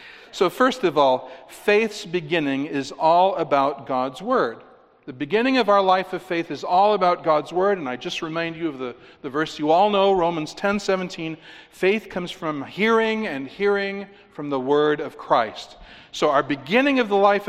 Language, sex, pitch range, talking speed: English, male, 155-200 Hz, 190 wpm